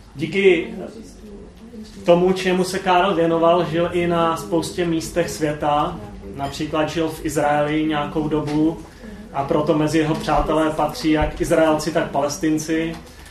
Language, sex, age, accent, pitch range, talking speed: Czech, male, 30-49, native, 145-170 Hz, 125 wpm